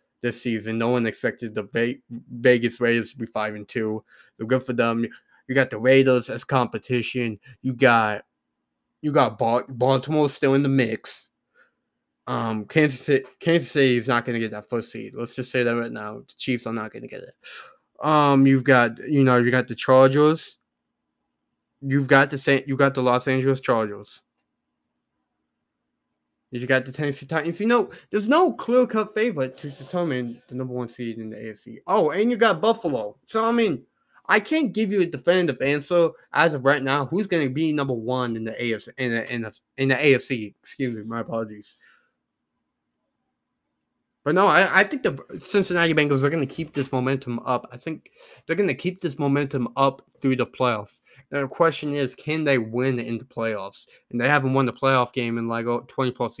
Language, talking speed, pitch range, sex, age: English, 195 wpm, 120-155 Hz, male, 20-39